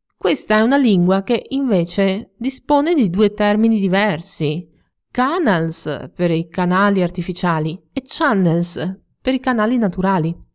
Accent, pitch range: native, 170-220 Hz